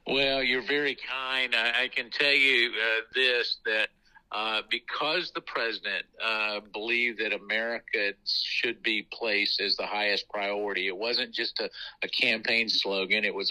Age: 50-69